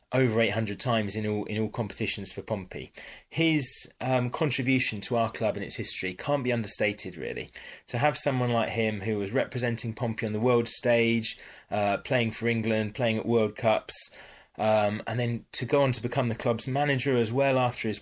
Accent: British